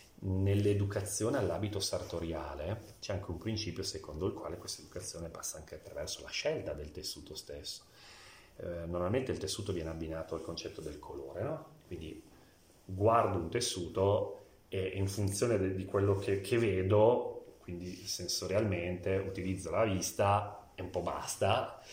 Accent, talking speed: native, 140 wpm